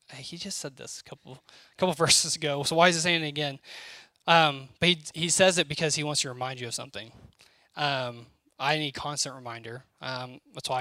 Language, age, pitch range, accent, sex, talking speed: English, 10-29, 130-160 Hz, American, male, 220 wpm